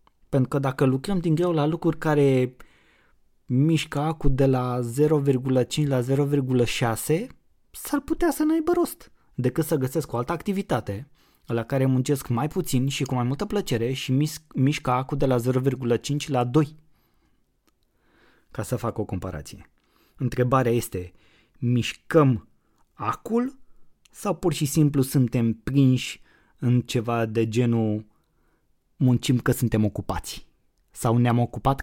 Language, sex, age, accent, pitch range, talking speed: Romanian, male, 20-39, native, 120-150 Hz, 135 wpm